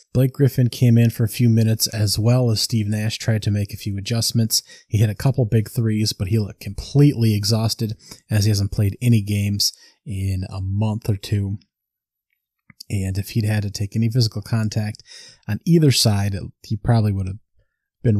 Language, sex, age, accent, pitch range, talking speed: English, male, 30-49, American, 100-120 Hz, 190 wpm